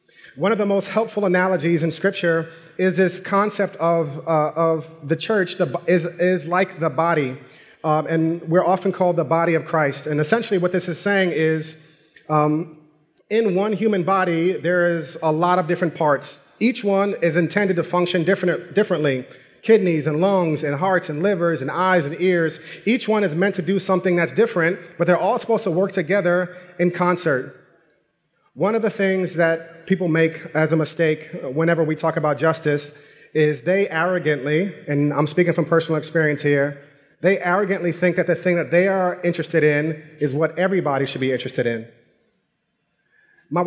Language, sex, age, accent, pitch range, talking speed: English, male, 30-49, American, 155-185 Hz, 180 wpm